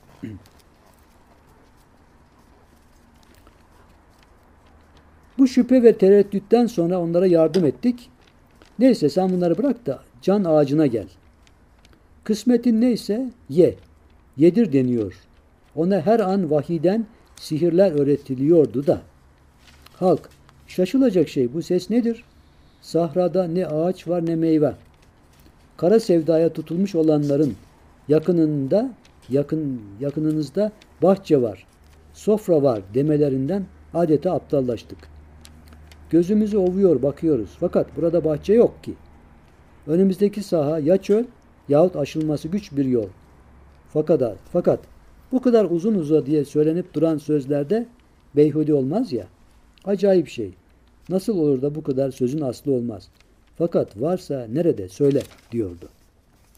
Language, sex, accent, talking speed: Turkish, male, native, 105 wpm